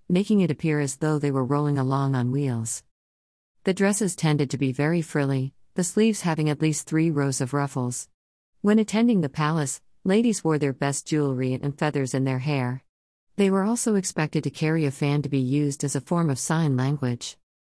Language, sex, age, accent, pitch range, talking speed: English, female, 50-69, American, 135-165 Hz, 195 wpm